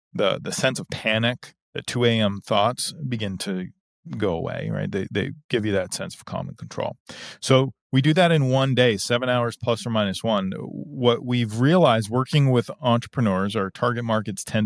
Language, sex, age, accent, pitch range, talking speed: English, male, 40-59, American, 105-130 Hz, 190 wpm